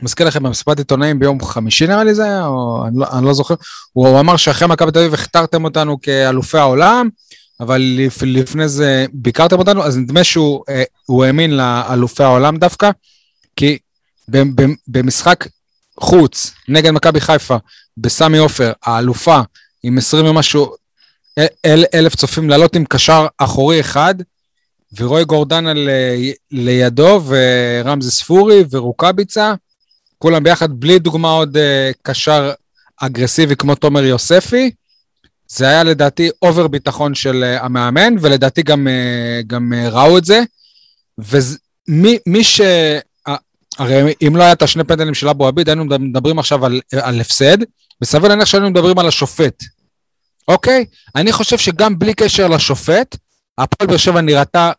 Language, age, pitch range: Hebrew, 20-39, 130-165 Hz